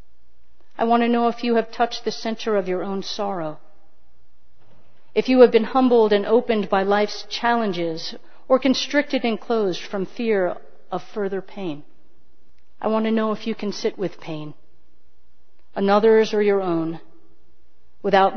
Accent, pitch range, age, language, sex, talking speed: American, 165-225 Hz, 40-59, English, female, 155 wpm